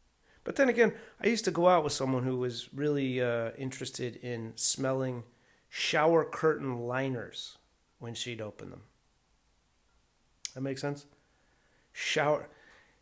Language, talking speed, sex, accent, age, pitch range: English, 130 wpm, male, American, 30-49, 115-150 Hz